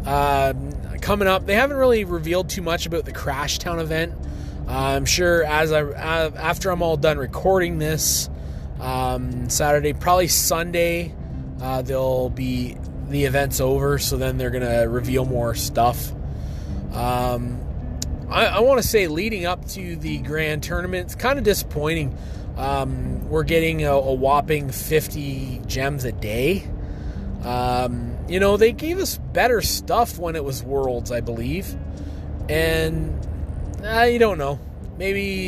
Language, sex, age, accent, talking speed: English, male, 20-39, American, 150 wpm